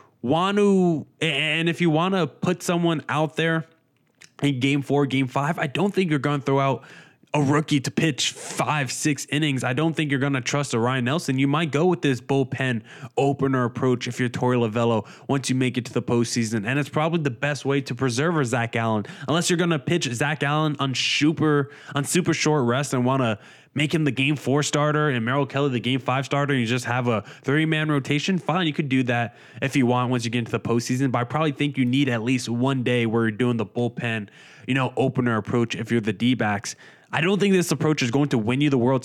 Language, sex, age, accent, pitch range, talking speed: English, male, 20-39, American, 125-150 Hz, 245 wpm